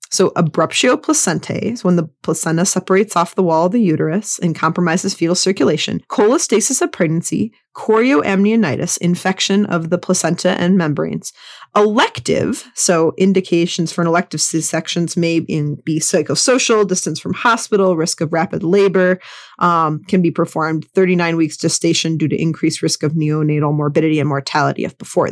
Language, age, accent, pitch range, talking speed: English, 30-49, American, 165-210 Hz, 150 wpm